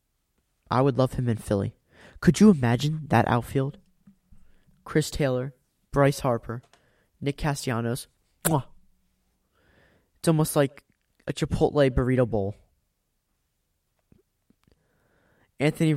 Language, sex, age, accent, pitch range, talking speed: English, male, 20-39, American, 115-150 Hz, 95 wpm